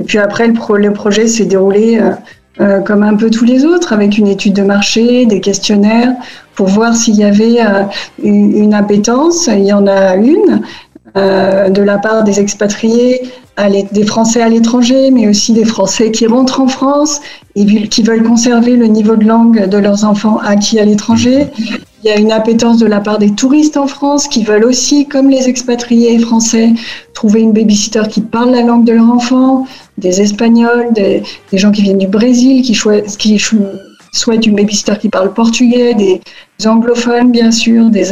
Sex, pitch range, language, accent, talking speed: female, 210-245 Hz, French, French, 180 wpm